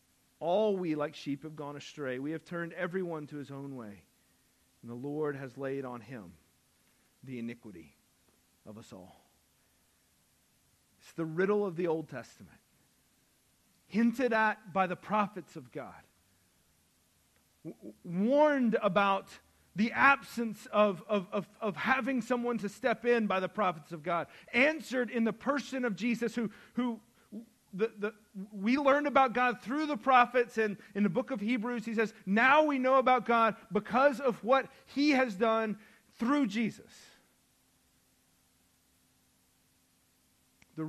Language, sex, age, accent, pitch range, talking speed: English, male, 40-59, American, 160-245 Hz, 140 wpm